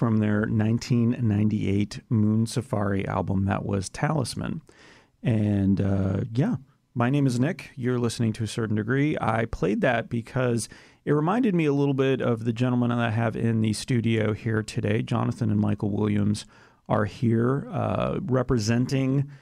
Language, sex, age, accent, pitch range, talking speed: English, male, 30-49, American, 105-120 Hz, 160 wpm